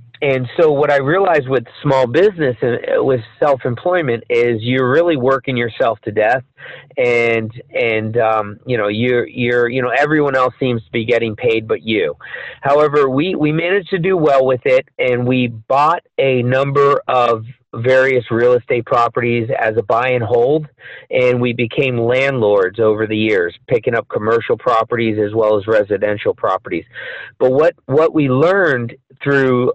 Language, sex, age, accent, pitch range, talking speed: English, male, 40-59, American, 115-150 Hz, 165 wpm